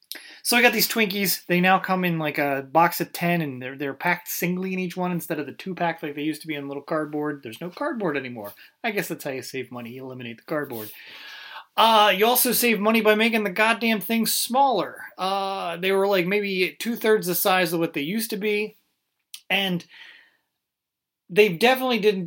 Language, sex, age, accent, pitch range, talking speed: English, male, 30-49, American, 150-205 Hz, 215 wpm